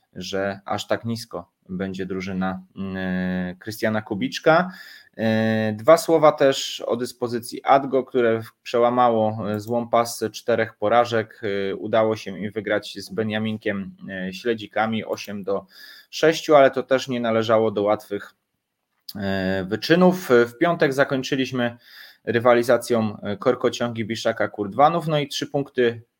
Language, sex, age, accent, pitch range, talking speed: Polish, male, 20-39, native, 110-125 Hz, 110 wpm